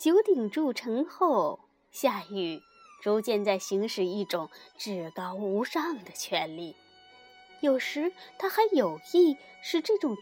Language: Chinese